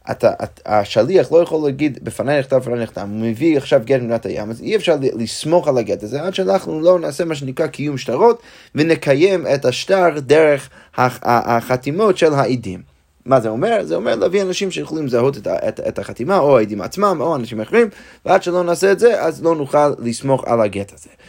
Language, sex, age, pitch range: Hebrew, male, 20-39, 115-160 Hz